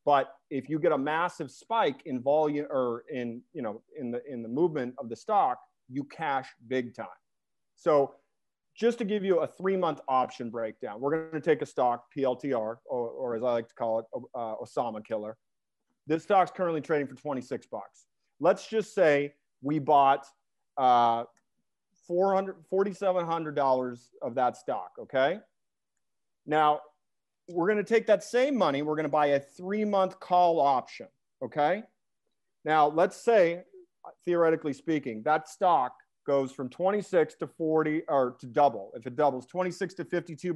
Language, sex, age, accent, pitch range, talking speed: English, male, 40-59, American, 135-185 Hz, 165 wpm